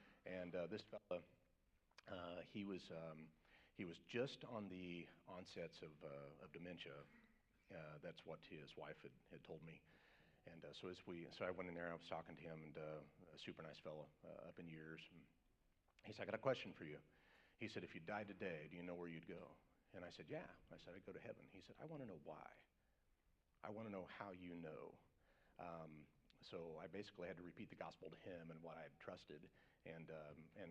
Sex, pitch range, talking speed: male, 80-90 Hz, 225 wpm